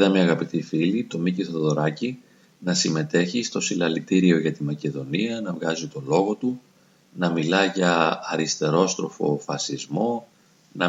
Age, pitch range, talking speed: 40-59, 80-105 Hz, 140 wpm